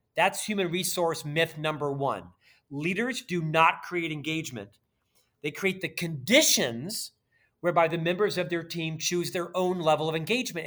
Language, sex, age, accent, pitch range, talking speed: English, male, 40-59, American, 160-205 Hz, 150 wpm